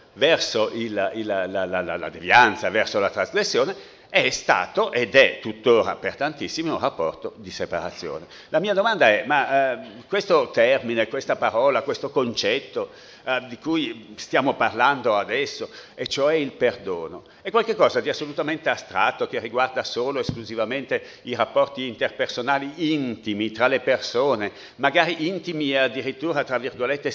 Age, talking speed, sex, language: 60-79, 145 wpm, male, Italian